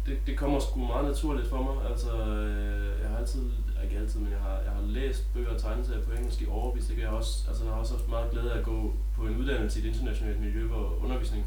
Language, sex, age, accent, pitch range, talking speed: Danish, male, 20-39, native, 95-125 Hz, 255 wpm